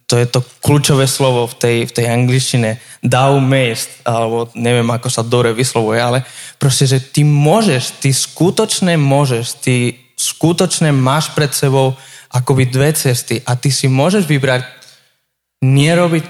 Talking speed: 145 wpm